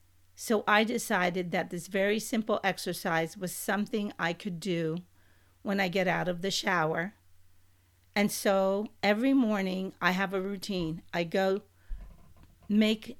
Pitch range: 165-215 Hz